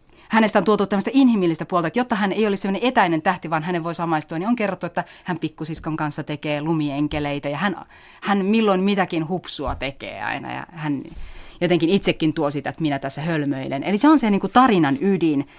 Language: Finnish